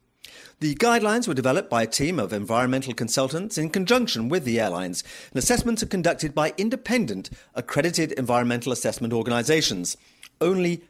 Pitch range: 130-210 Hz